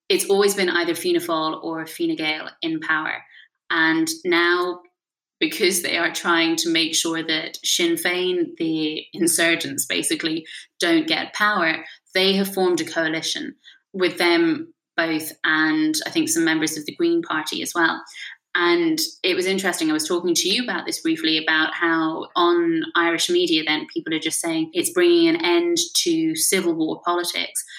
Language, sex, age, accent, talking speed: English, female, 20-39, British, 170 wpm